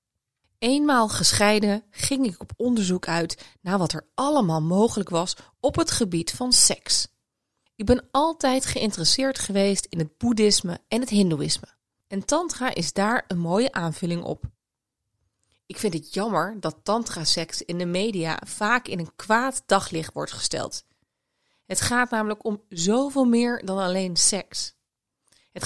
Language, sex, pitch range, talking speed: Dutch, female, 170-235 Hz, 150 wpm